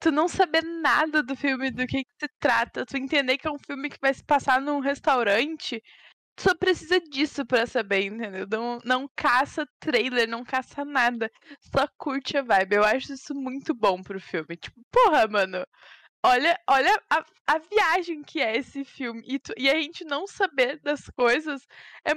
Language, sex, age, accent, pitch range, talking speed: Portuguese, female, 10-29, Brazilian, 230-295 Hz, 190 wpm